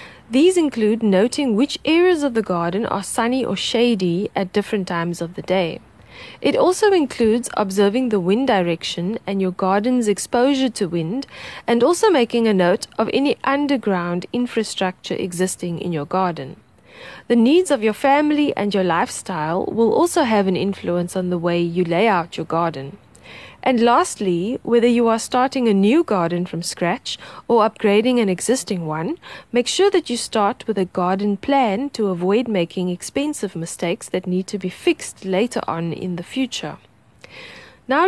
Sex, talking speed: female, 165 wpm